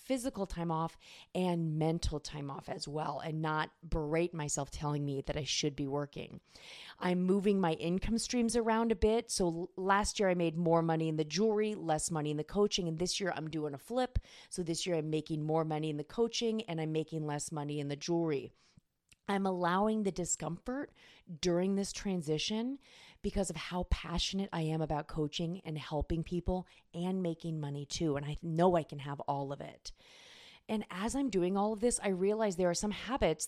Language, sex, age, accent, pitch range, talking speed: English, female, 30-49, American, 155-200 Hz, 200 wpm